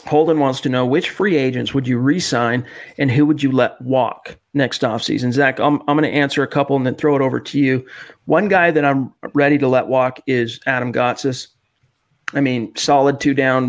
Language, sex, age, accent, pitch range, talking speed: English, male, 40-59, American, 130-155 Hz, 205 wpm